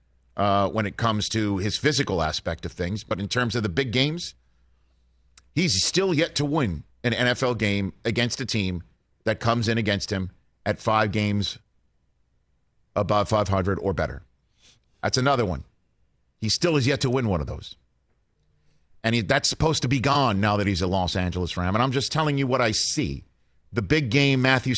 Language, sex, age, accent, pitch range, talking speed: English, male, 50-69, American, 90-130 Hz, 185 wpm